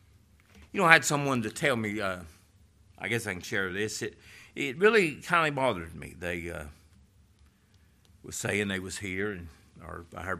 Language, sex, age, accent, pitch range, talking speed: English, male, 60-79, American, 90-125 Hz, 185 wpm